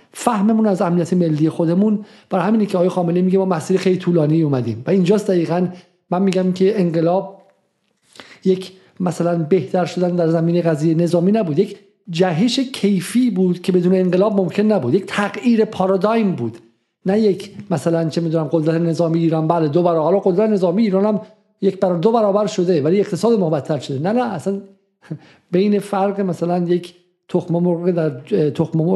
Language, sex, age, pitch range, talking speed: Persian, male, 50-69, 165-205 Hz, 165 wpm